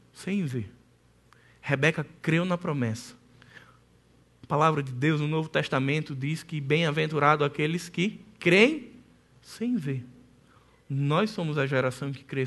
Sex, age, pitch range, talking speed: male, 20-39, 140-185 Hz, 130 wpm